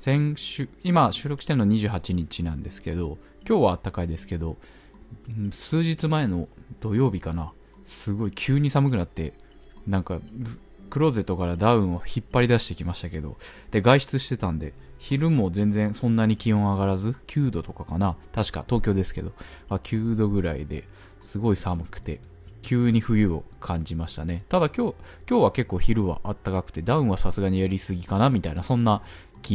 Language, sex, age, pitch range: Japanese, male, 20-39, 85-115 Hz